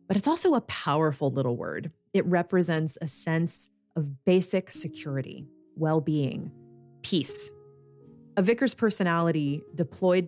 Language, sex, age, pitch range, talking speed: English, female, 30-49, 150-195 Hz, 115 wpm